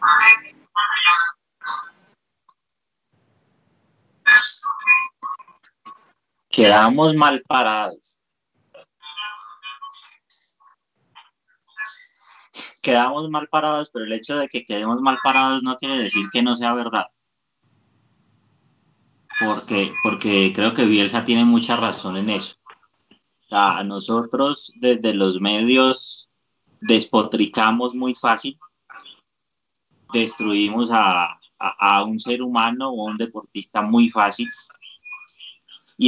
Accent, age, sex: Colombian, 30-49, male